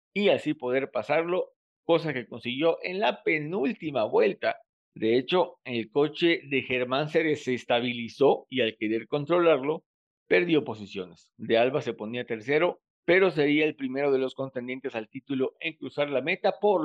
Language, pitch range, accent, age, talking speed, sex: Spanish, 125-170 Hz, Mexican, 50-69, 160 wpm, male